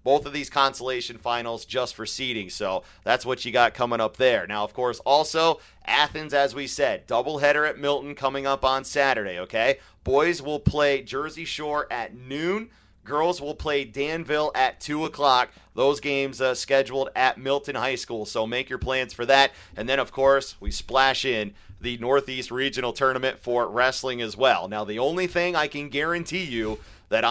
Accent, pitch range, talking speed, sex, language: American, 115-140 Hz, 185 wpm, male, English